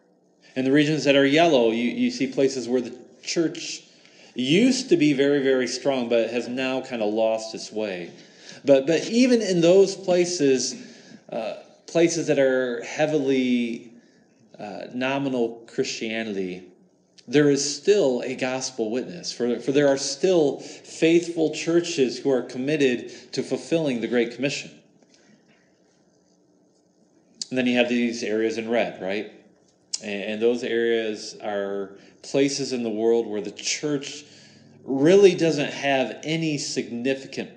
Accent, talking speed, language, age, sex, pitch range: American, 140 wpm, English, 40-59, male, 115-150 Hz